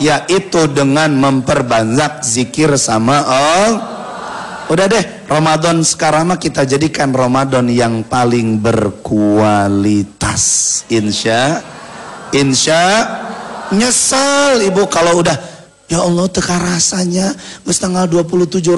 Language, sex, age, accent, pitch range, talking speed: Indonesian, male, 30-49, native, 120-190 Hz, 95 wpm